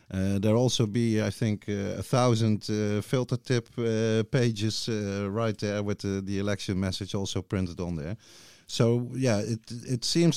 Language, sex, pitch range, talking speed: Dutch, male, 95-110 Hz, 180 wpm